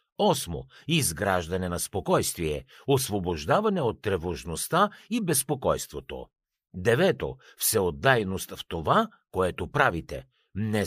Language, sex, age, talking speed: Bulgarian, male, 60-79, 100 wpm